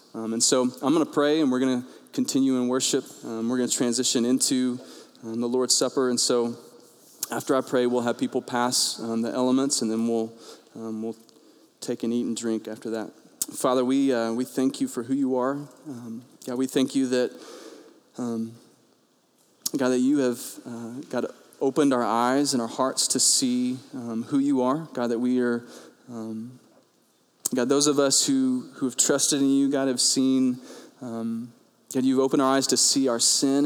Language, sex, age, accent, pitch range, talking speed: English, male, 20-39, American, 120-135 Hz, 200 wpm